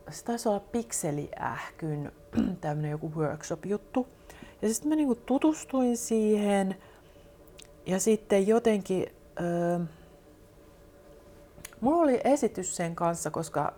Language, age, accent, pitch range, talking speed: Finnish, 30-49, native, 155-215 Hz, 110 wpm